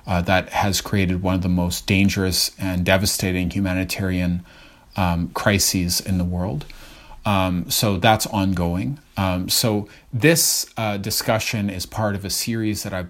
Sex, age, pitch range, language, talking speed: male, 30-49, 95-110 Hz, English, 150 wpm